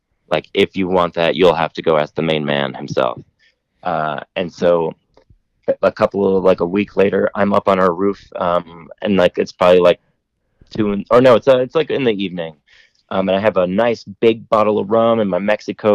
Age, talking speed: 30-49, 220 wpm